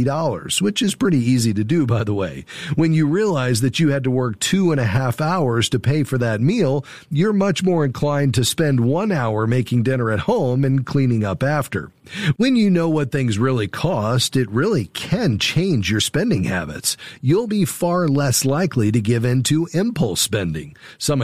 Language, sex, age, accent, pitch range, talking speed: English, male, 40-59, American, 120-155 Hz, 195 wpm